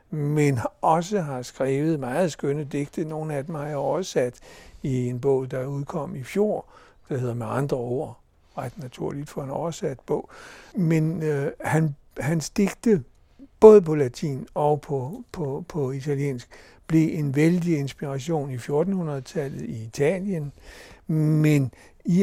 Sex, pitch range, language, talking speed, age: male, 130-165 Hz, Danish, 145 wpm, 60-79